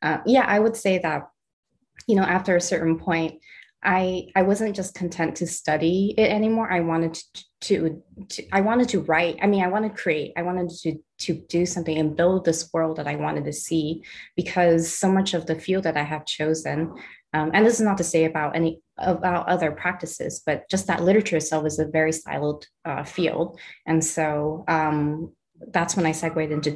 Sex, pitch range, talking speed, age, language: female, 155-190 Hz, 205 wpm, 20-39, English